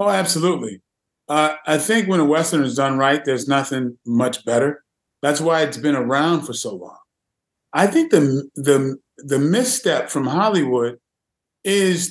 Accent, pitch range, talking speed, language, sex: American, 140-190 Hz, 160 wpm, English, male